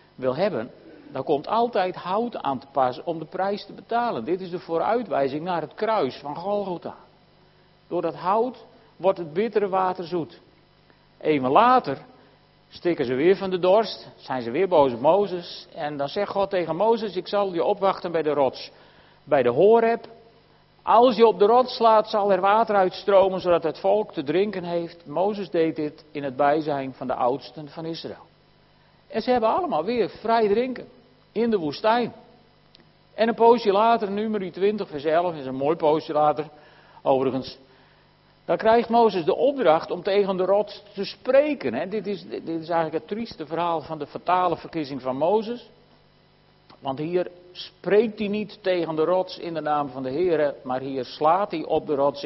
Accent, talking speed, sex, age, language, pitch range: Dutch, 180 wpm, male, 50-69, Dutch, 150-210 Hz